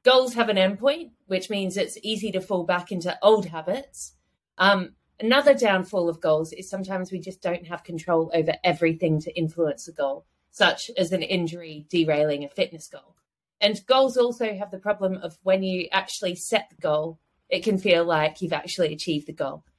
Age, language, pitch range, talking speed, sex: 30-49, English, 170-240 Hz, 190 wpm, female